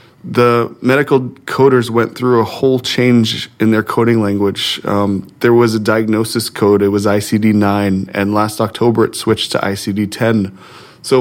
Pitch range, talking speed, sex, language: 105-120 Hz, 155 wpm, male, English